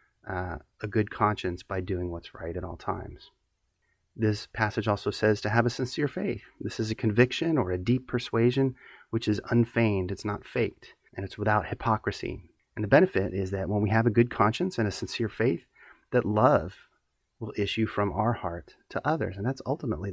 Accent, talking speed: American, 195 wpm